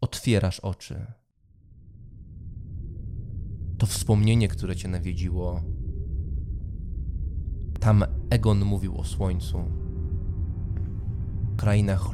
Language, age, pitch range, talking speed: English, 20-39, 90-110 Hz, 70 wpm